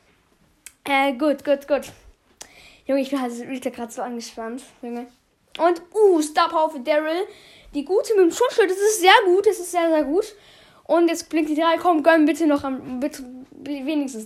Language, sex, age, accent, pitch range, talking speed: German, female, 10-29, German, 270-355 Hz, 185 wpm